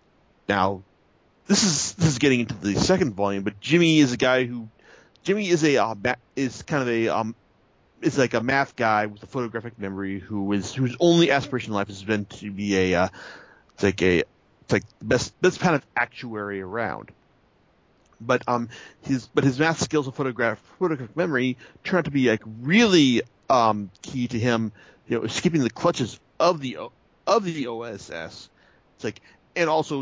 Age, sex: 40-59, male